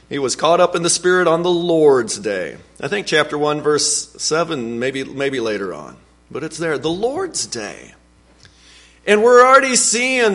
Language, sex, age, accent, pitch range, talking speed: English, male, 40-59, American, 145-210 Hz, 180 wpm